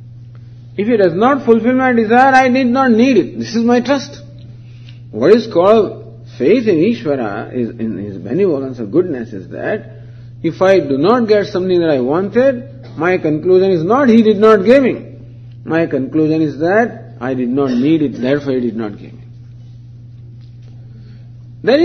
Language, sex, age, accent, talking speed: English, male, 50-69, Indian, 175 wpm